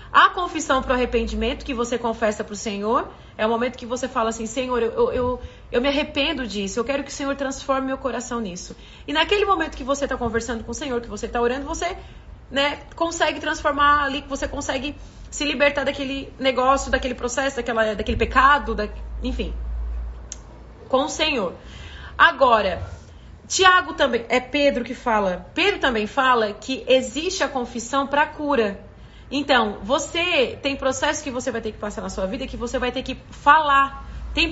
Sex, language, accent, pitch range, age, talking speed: female, Portuguese, Brazilian, 235-285 Hz, 30-49, 185 wpm